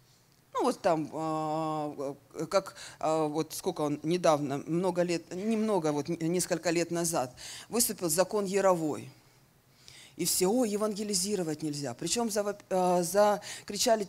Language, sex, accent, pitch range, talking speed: Russian, female, native, 160-240 Hz, 105 wpm